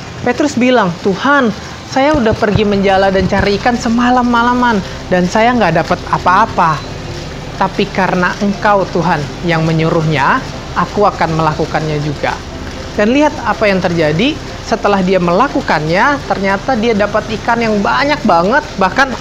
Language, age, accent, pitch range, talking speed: Indonesian, 30-49, native, 165-225 Hz, 130 wpm